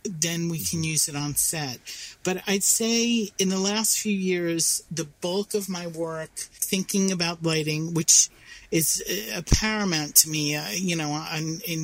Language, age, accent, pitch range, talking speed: English, 40-59, American, 160-190 Hz, 165 wpm